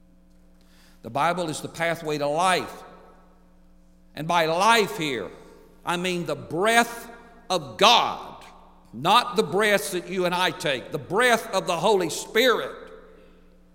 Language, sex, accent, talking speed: English, male, American, 135 wpm